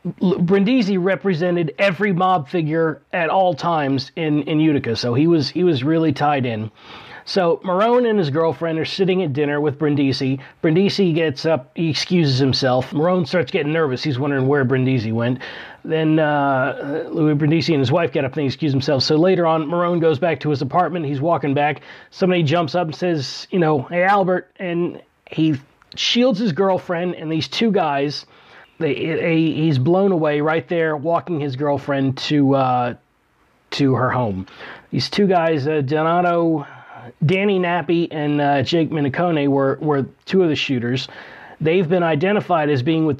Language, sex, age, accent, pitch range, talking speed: English, male, 30-49, American, 140-175 Hz, 175 wpm